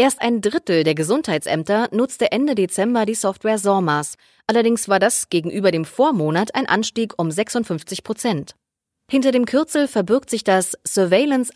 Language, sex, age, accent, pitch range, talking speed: German, female, 20-39, German, 175-245 Hz, 150 wpm